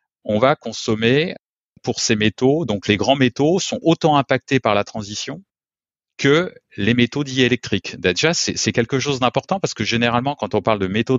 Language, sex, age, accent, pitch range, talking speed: French, male, 30-49, French, 110-140 Hz, 180 wpm